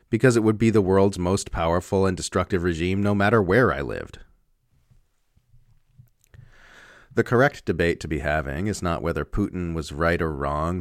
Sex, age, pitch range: male, 40-59, 80-100 Hz